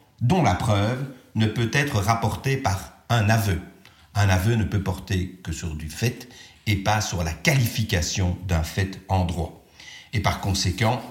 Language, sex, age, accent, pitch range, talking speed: French, male, 50-69, French, 95-130 Hz, 165 wpm